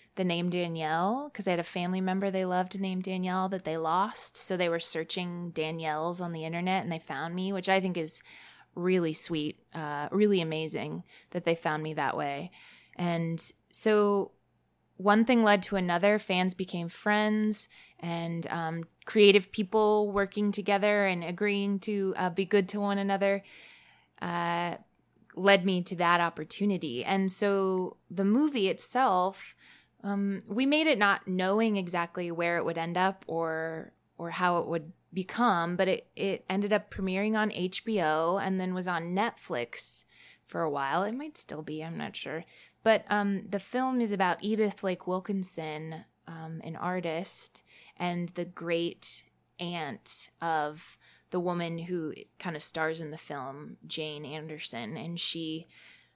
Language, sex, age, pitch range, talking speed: English, female, 20-39, 165-200 Hz, 160 wpm